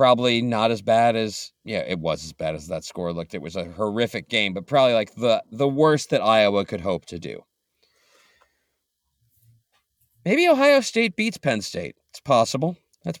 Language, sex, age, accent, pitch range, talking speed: English, male, 40-59, American, 110-155 Hz, 180 wpm